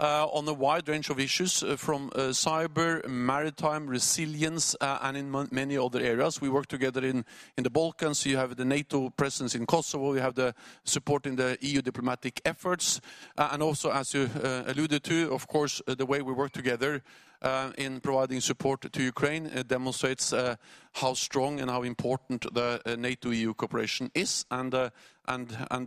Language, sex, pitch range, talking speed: English, male, 125-150 Hz, 185 wpm